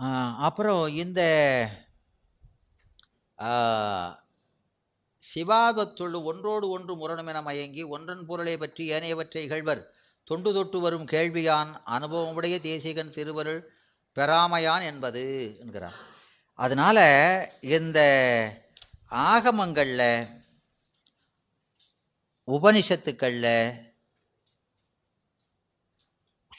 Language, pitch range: Tamil, 135-170 Hz